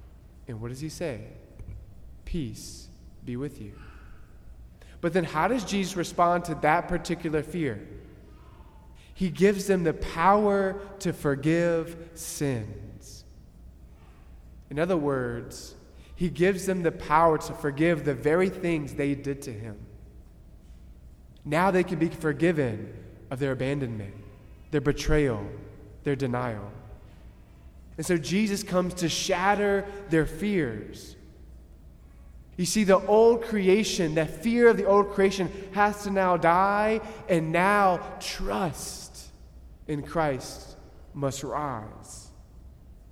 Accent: American